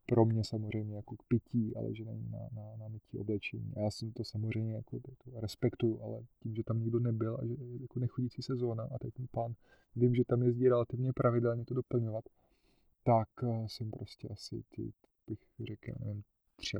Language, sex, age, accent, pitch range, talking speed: Czech, male, 20-39, native, 105-120 Hz, 205 wpm